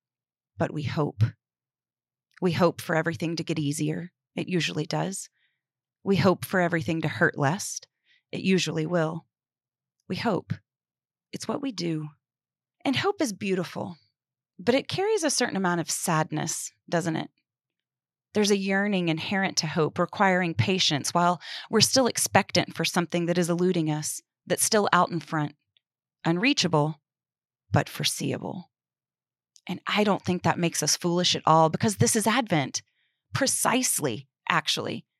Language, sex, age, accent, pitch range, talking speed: English, female, 30-49, American, 160-195 Hz, 145 wpm